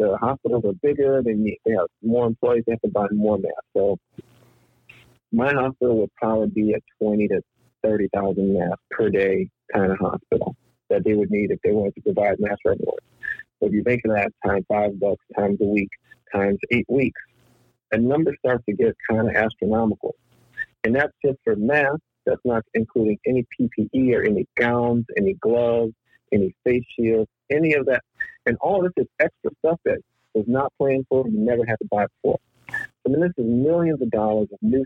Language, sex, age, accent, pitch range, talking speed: English, male, 50-69, American, 110-135 Hz, 200 wpm